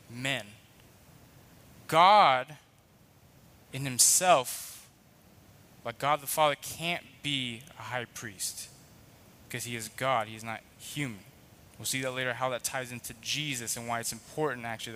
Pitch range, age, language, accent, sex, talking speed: 120-160 Hz, 20-39, English, American, male, 140 wpm